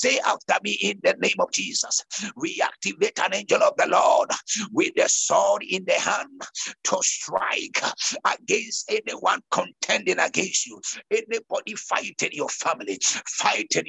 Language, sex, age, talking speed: English, male, 60-79, 145 wpm